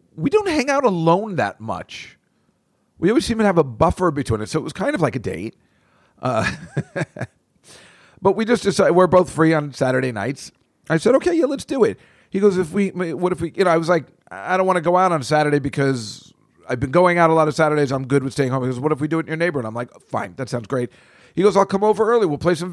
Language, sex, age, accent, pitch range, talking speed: English, male, 40-59, American, 120-175 Hz, 265 wpm